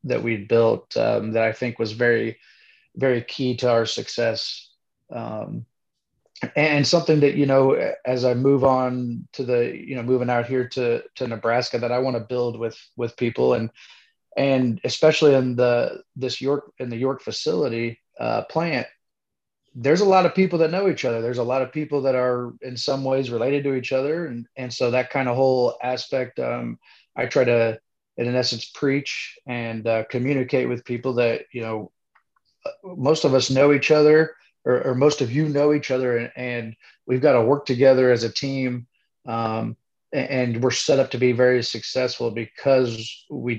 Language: English